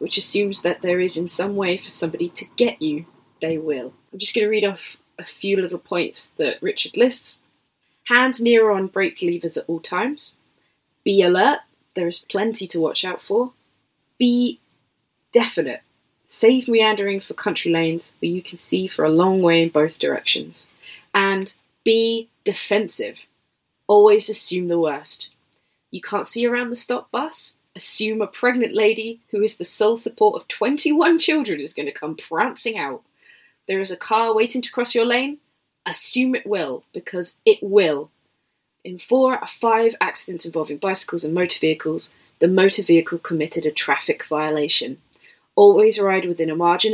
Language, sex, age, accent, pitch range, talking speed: English, female, 20-39, British, 175-230 Hz, 170 wpm